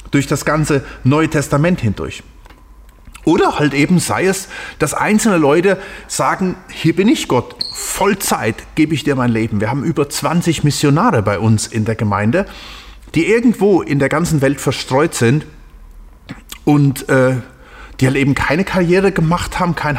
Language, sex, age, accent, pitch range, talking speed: German, male, 30-49, German, 120-170 Hz, 160 wpm